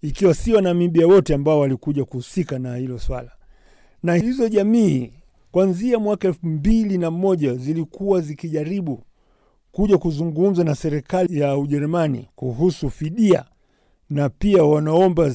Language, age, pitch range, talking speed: Swahili, 50-69, 145-180 Hz, 115 wpm